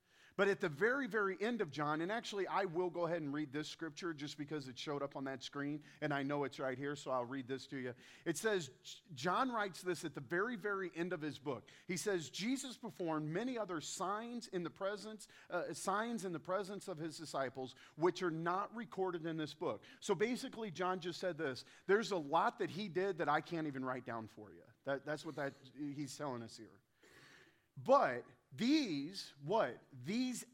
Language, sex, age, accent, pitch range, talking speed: English, male, 40-59, American, 155-225 Hz, 210 wpm